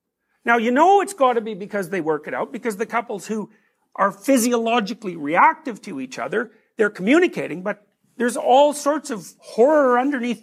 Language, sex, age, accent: English, male, 50-69, American